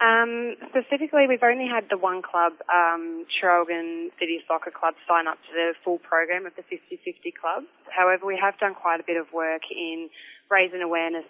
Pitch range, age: 155-175 Hz, 20-39